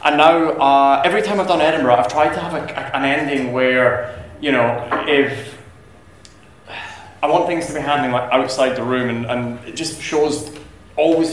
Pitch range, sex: 125-150 Hz, male